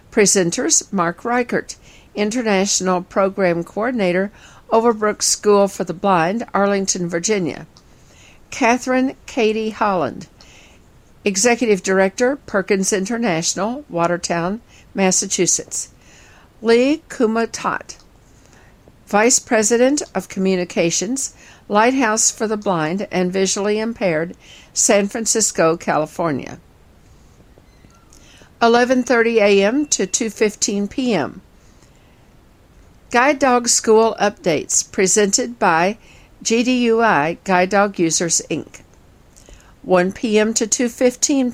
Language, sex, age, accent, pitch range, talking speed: English, female, 60-79, American, 185-230 Hz, 80 wpm